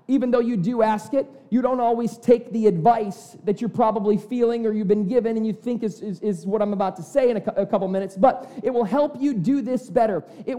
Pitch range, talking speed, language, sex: 205-255 Hz, 260 wpm, English, male